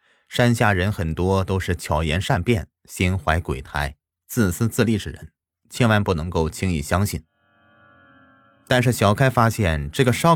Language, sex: Chinese, male